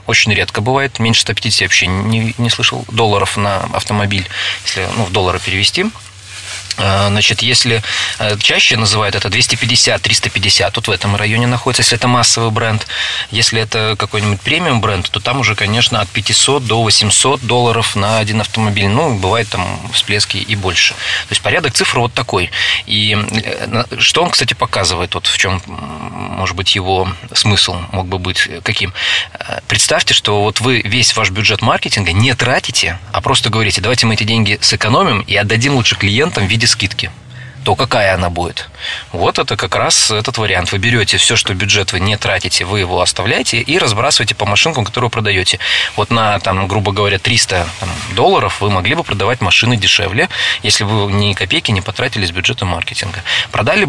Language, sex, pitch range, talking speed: Russian, male, 100-120 Hz, 170 wpm